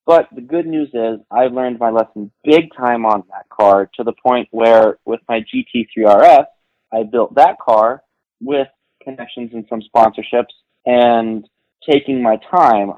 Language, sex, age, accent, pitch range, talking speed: English, male, 20-39, American, 110-125 Hz, 160 wpm